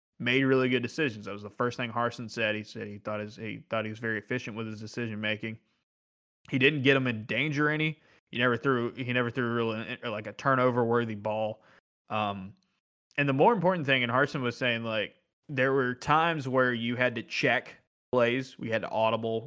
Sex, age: male, 20-39